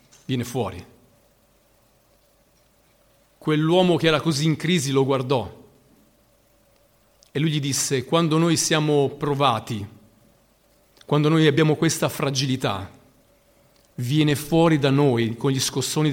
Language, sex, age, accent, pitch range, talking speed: Italian, male, 40-59, native, 120-165 Hz, 110 wpm